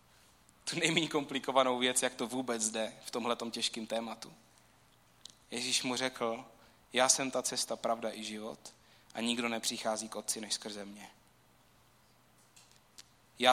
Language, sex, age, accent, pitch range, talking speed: Czech, male, 30-49, native, 120-175 Hz, 140 wpm